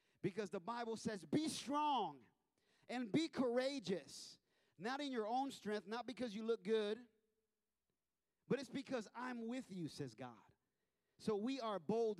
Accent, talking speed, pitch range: American, 150 wpm, 145-210 Hz